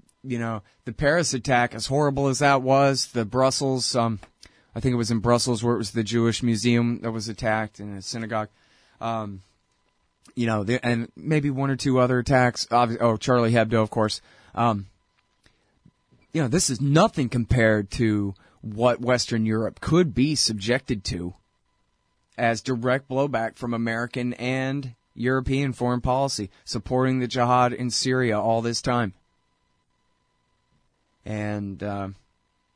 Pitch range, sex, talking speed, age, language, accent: 110-125 Hz, male, 145 wpm, 30-49, English, American